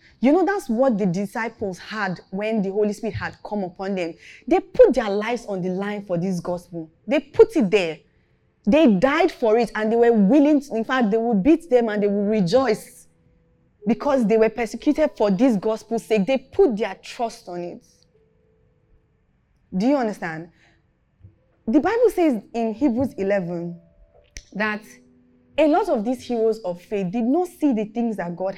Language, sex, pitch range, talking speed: English, female, 175-250 Hz, 180 wpm